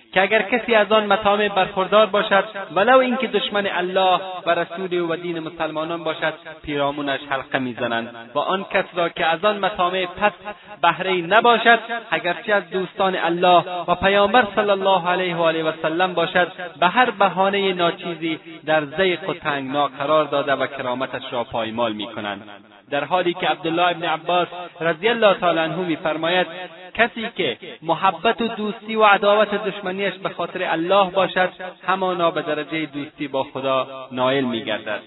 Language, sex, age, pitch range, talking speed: Persian, male, 30-49, 150-200 Hz, 165 wpm